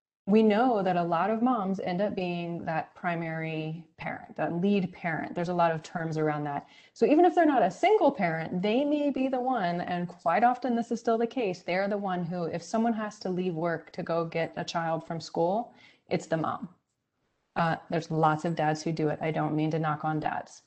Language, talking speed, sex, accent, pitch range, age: English, 230 wpm, female, American, 165-215 Hz, 20-39